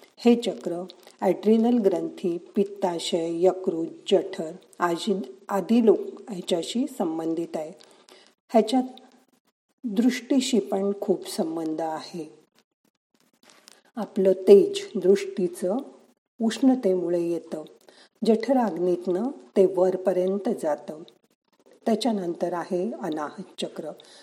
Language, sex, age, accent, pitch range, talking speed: Marathi, female, 50-69, native, 175-220 Hz, 80 wpm